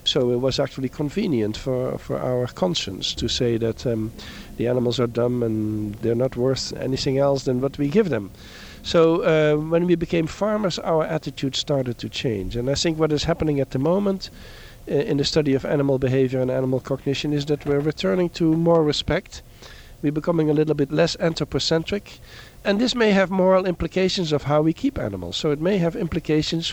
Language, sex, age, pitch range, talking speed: English, male, 50-69, 120-155 Hz, 200 wpm